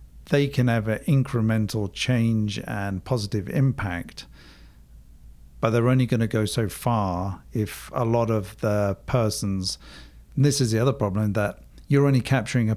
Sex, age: male, 50-69